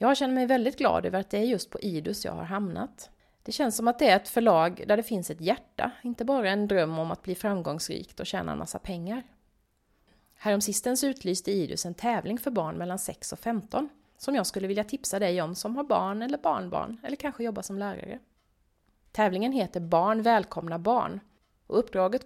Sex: female